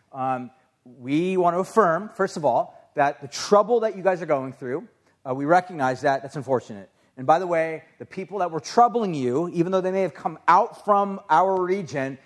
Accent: American